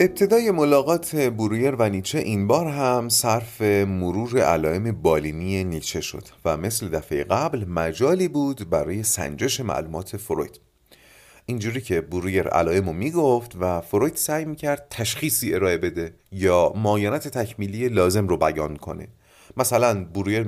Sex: male